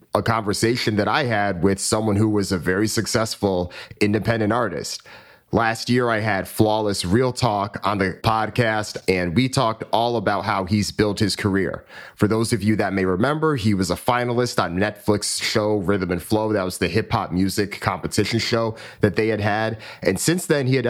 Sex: male